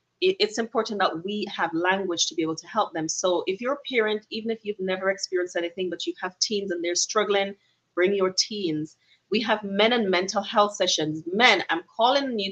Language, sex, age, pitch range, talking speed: English, female, 30-49, 175-220 Hz, 210 wpm